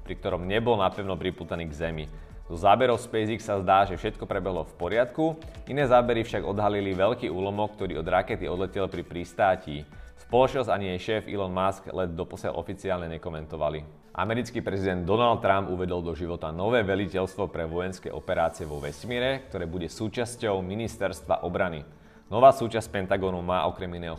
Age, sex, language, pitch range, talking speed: 30-49, male, Slovak, 85-110 Hz, 160 wpm